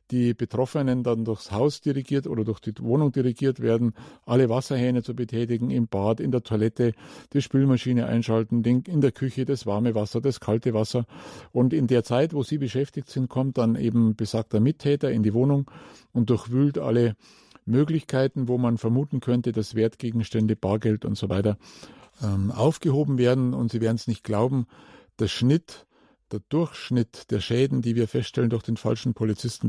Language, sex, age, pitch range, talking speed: German, male, 50-69, 115-130 Hz, 170 wpm